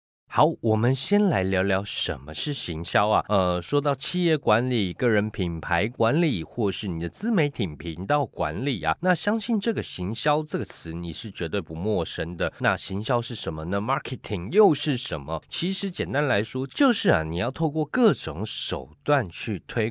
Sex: male